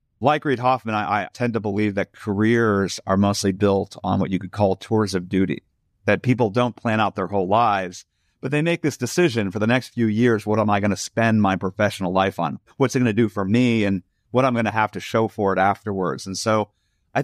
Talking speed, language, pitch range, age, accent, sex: 245 wpm, English, 100-125 Hz, 40-59, American, male